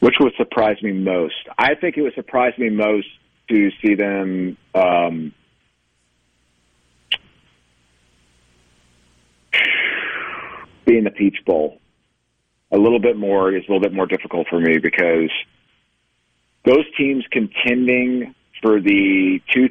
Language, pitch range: English, 85-115 Hz